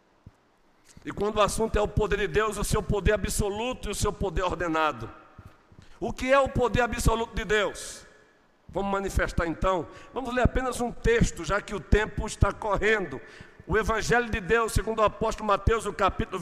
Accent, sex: Brazilian, male